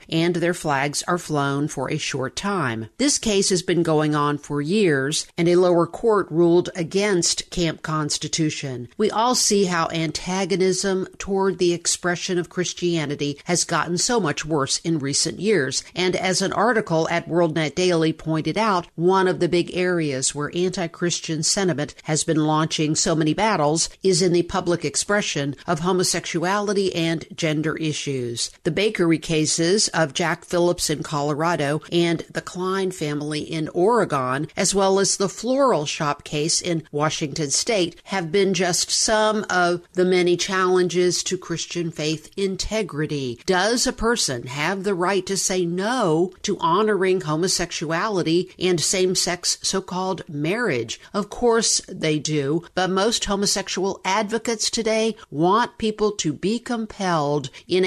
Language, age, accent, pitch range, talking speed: English, 50-69, American, 155-190 Hz, 150 wpm